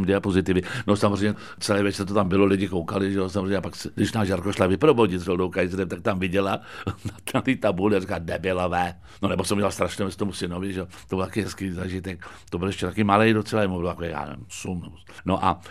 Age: 60-79